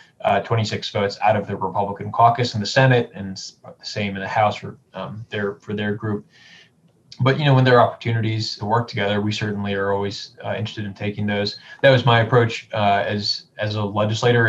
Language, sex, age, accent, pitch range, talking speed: English, male, 20-39, American, 105-125 Hz, 210 wpm